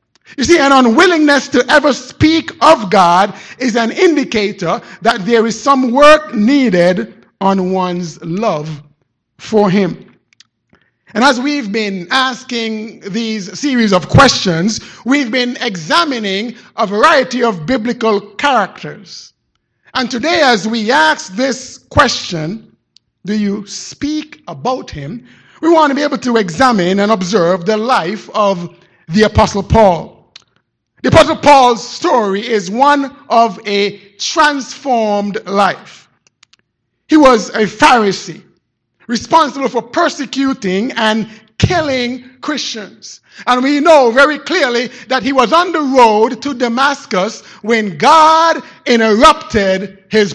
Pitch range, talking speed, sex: 200-270 Hz, 125 wpm, male